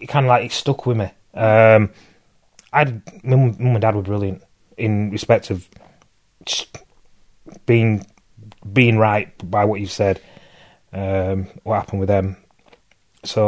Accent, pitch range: British, 100-125 Hz